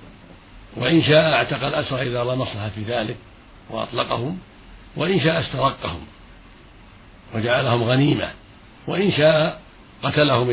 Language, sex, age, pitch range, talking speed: Arabic, male, 60-79, 110-130 Hz, 105 wpm